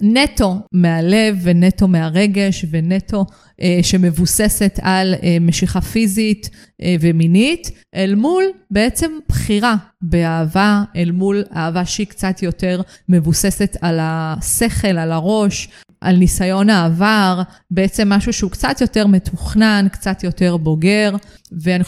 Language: Hebrew